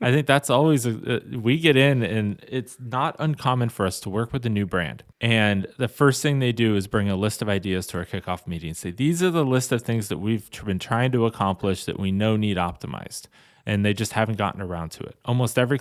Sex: male